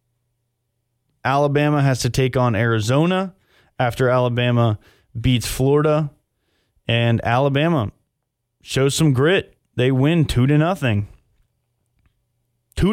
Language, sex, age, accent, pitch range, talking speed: English, male, 20-39, American, 120-140 Hz, 95 wpm